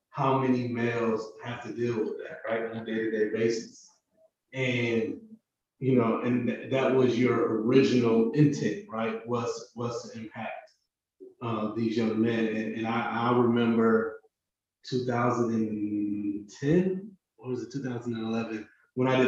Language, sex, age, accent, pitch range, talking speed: English, male, 30-49, American, 115-130 Hz, 135 wpm